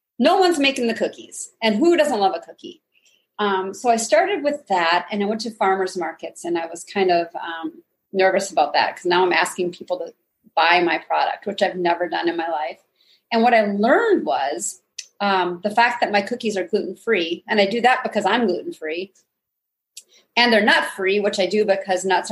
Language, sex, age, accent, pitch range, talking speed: English, female, 30-49, American, 195-250 Hz, 210 wpm